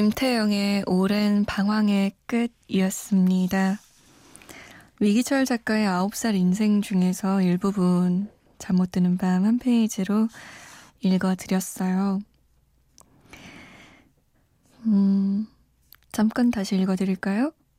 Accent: native